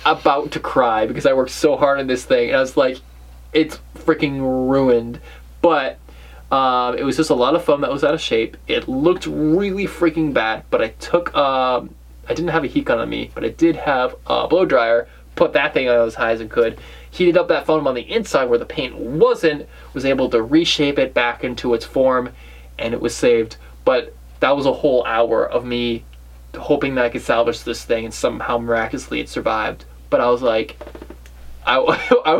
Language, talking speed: English, 210 wpm